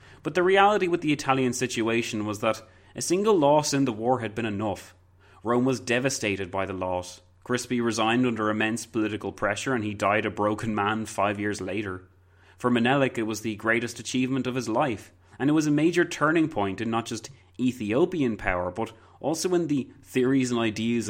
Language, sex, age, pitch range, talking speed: English, male, 30-49, 100-130 Hz, 195 wpm